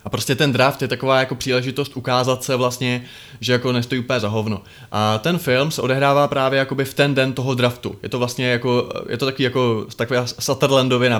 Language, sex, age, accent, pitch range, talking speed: Czech, male, 20-39, native, 120-145 Hz, 210 wpm